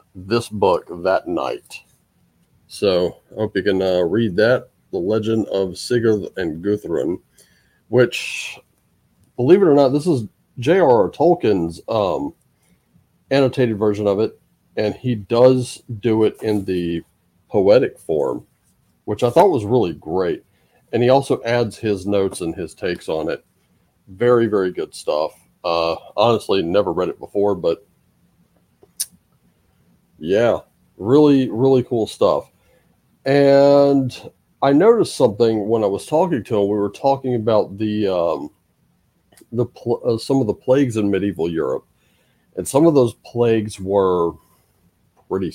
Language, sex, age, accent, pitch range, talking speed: English, male, 40-59, American, 95-120 Hz, 140 wpm